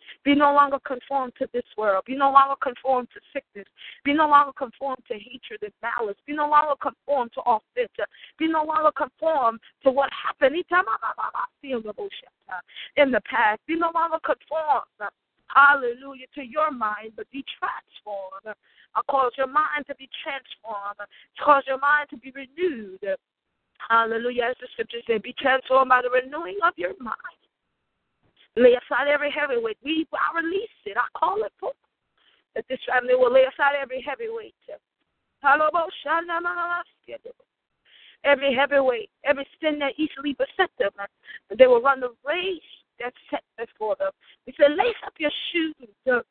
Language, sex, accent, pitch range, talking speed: English, female, American, 245-310 Hz, 160 wpm